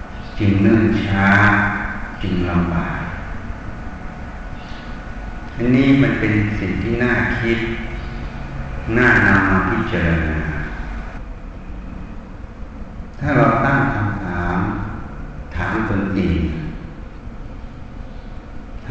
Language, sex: Thai, male